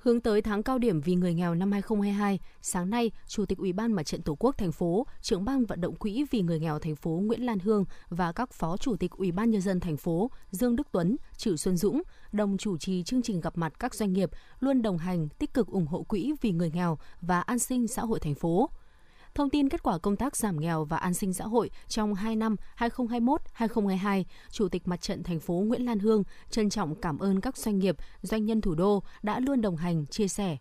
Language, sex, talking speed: Vietnamese, female, 240 wpm